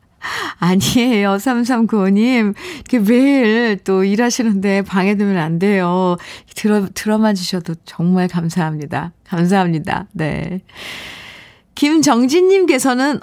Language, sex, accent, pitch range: Korean, female, native, 170-235 Hz